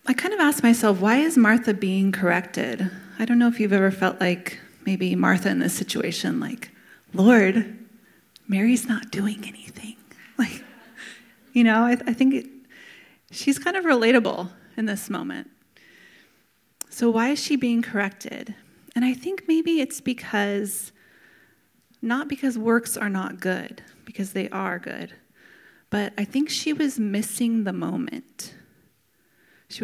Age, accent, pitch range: 30-49, American, 195-240 Hz